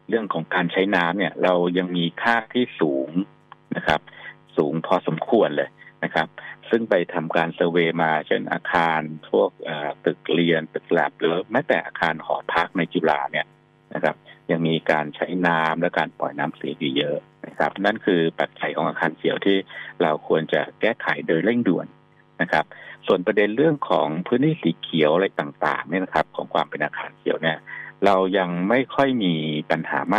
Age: 60-79